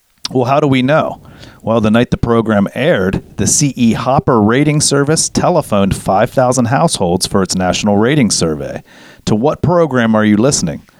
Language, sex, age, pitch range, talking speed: English, male, 40-59, 95-125 Hz, 165 wpm